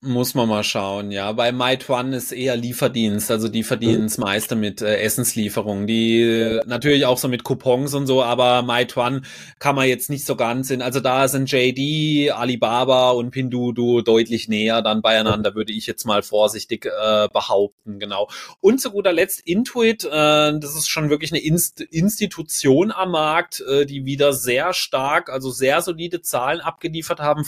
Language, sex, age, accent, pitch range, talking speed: German, male, 20-39, German, 125-150 Hz, 170 wpm